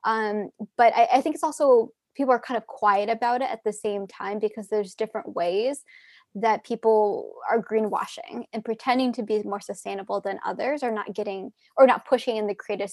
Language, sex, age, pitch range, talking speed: English, female, 10-29, 210-255 Hz, 200 wpm